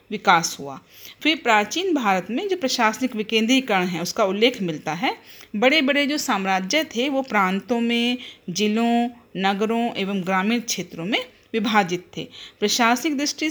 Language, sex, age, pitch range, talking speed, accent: Hindi, female, 40-59, 195-255 Hz, 140 wpm, native